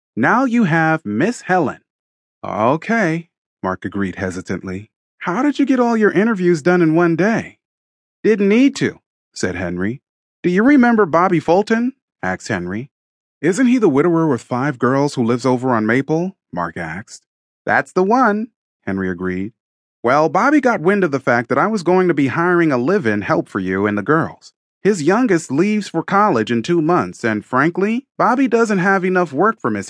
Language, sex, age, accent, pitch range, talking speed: English, male, 30-49, American, 130-215 Hz, 180 wpm